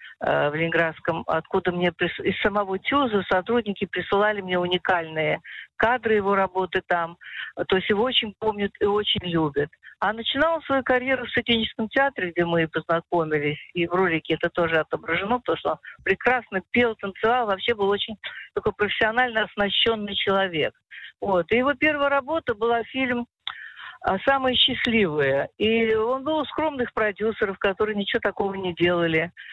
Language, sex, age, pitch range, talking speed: Hebrew, female, 50-69, 180-235 Hz, 150 wpm